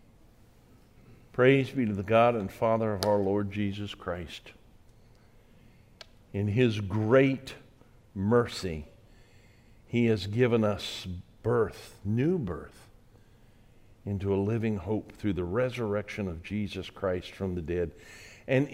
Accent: American